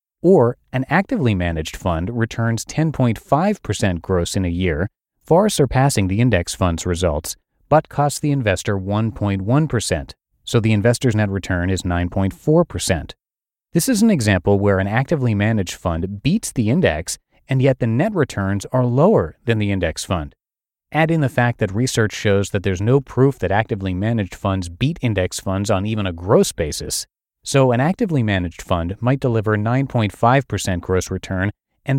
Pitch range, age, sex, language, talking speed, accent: 95-135 Hz, 30-49, male, English, 160 wpm, American